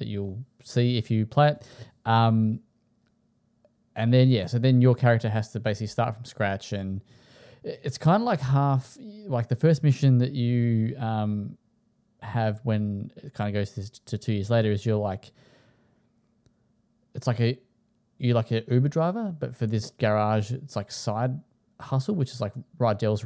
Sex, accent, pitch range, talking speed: male, Australian, 105-125 Hz, 175 wpm